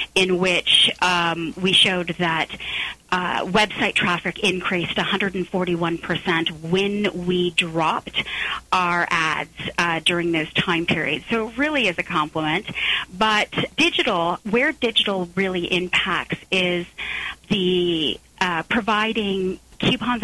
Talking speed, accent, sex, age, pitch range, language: 115 wpm, American, female, 30-49, 175-200 Hz, English